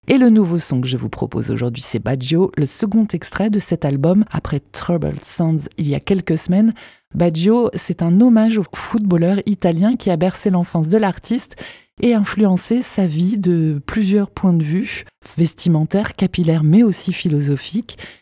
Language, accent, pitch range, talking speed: French, French, 160-210 Hz, 170 wpm